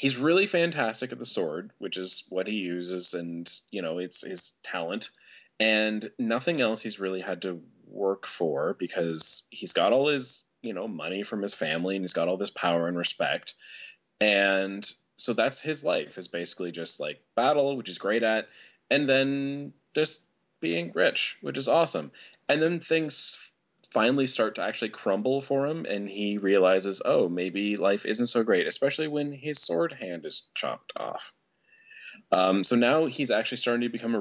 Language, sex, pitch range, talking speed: English, male, 95-135 Hz, 180 wpm